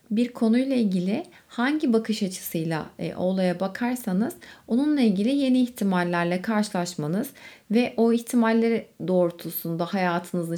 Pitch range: 180-250 Hz